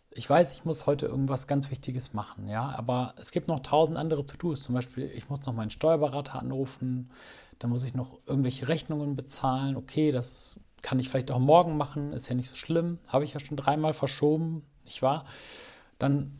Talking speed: 200 wpm